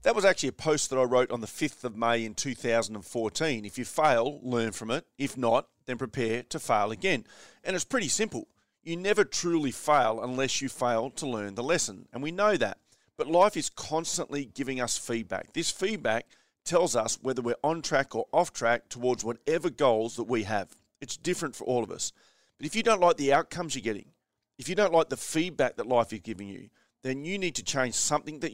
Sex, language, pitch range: male, English, 115-160 Hz